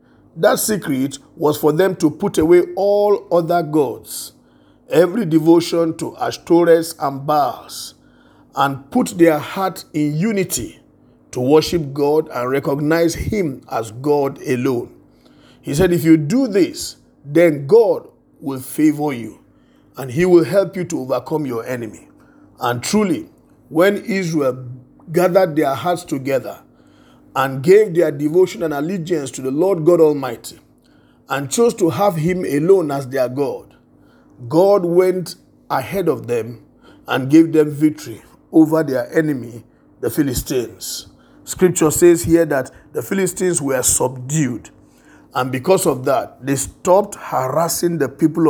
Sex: male